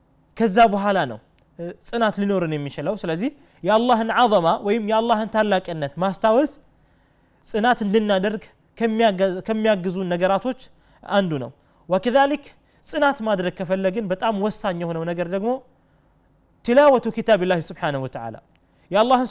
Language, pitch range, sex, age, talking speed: Amharic, 180-250 Hz, male, 20-39, 110 wpm